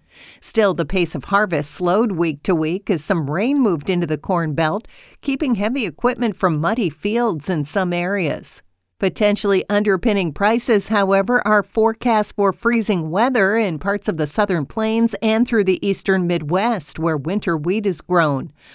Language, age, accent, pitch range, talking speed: English, 50-69, American, 170-210 Hz, 165 wpm